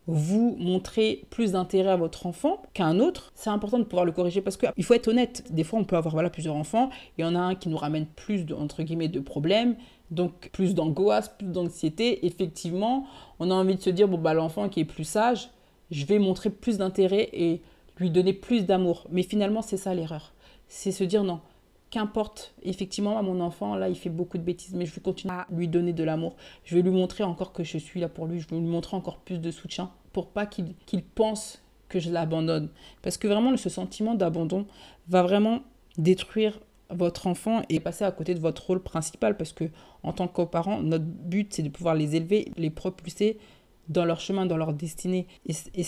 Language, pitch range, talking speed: French, 170-205 Hz, 225 wpm